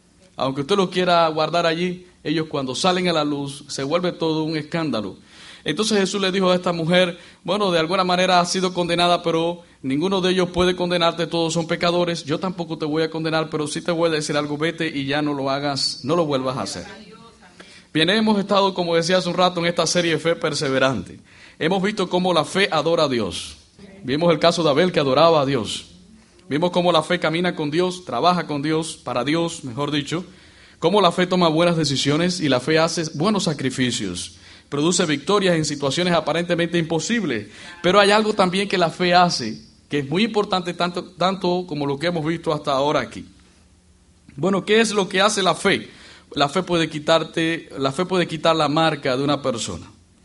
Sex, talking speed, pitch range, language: male, 200 wpm, 145-180 Hz, English